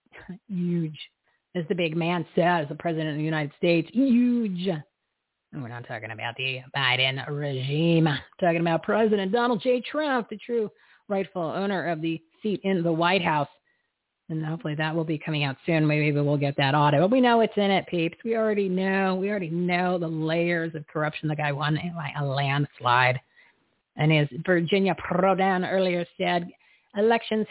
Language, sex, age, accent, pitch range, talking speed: English, female, 40-59, American, 160-205 Hz, 175 wpm